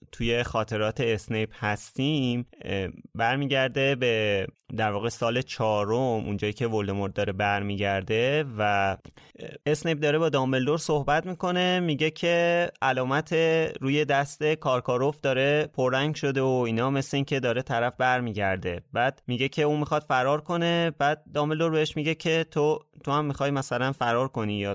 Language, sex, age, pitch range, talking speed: Persian, male, 20-39, 115-150 Hz, 140 wpm